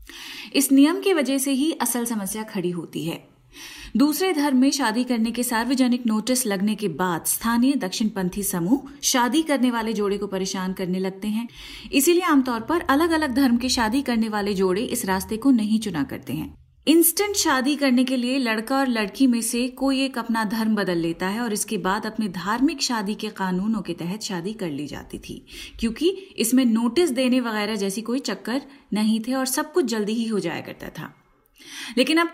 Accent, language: native, Hindi